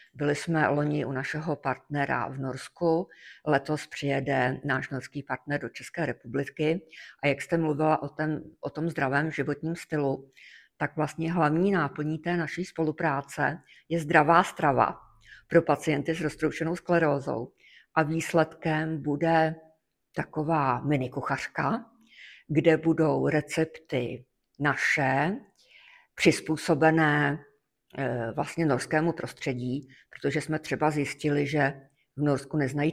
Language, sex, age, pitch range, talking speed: Czech, female, 50-69, 140-160 Hz, 115 wpm